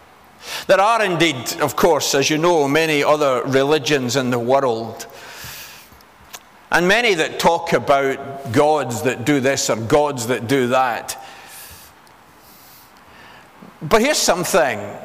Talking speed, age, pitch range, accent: 125 wpm, 50-69, 125-160 Hz, British